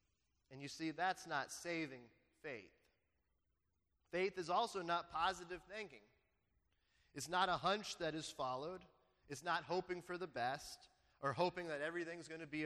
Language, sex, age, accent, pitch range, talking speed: English, male, 30-49, American, 140-180 Hz, 155 wpm